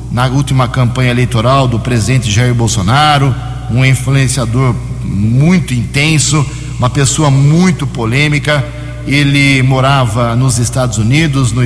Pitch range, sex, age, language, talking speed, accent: 120-145 Hz, male, 60-79, Portuguese, 115 wpm, Brazilian